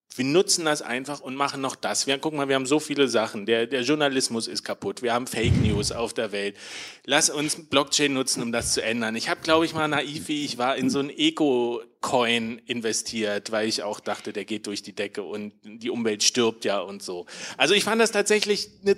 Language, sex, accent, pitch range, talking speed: German, male, German, 115-155 Hz, 225 wpm